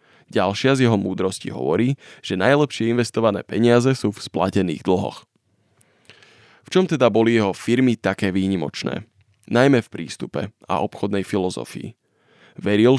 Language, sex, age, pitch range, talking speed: Slovak, male, 20-39, 95-115 Hz, 130 wpm